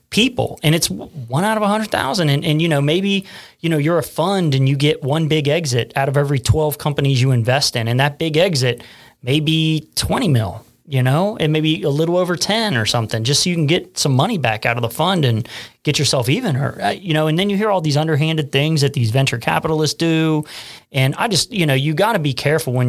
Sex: male